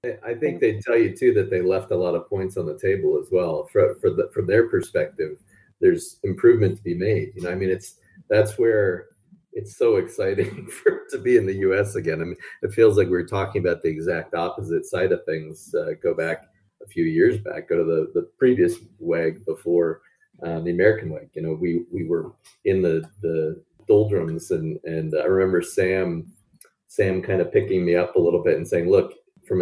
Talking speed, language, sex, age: 215 wpm, English, male, 30-49